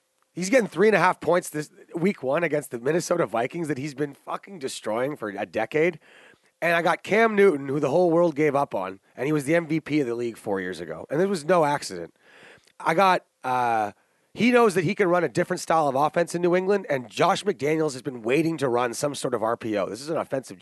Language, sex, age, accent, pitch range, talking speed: English, male, 30-49, American, 150-225 Hz, 240 wpm